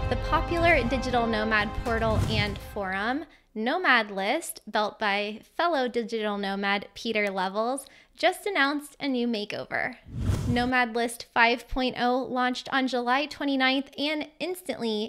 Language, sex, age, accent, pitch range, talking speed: English, female, 10-29, American, 215-270 Hz, 120 wpm